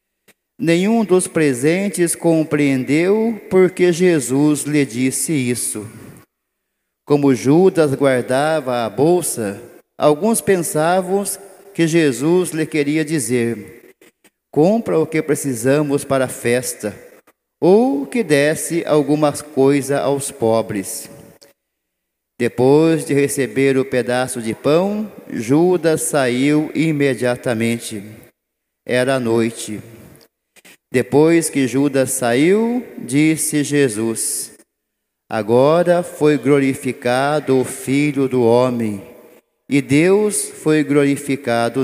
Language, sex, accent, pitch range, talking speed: Portuguese, male, Brazilian, 125-160 Hz, 90 wpm